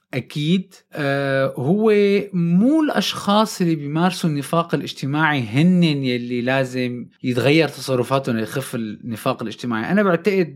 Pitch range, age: 130-180 Hz, 20-39